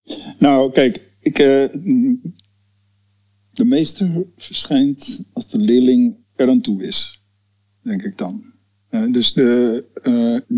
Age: 50-69